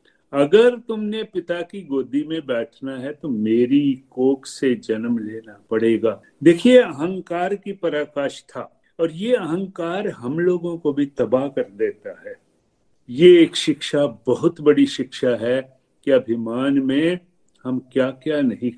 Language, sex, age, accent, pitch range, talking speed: Hindi, male, 50-69, native, 130-195 Hz, 145 wpm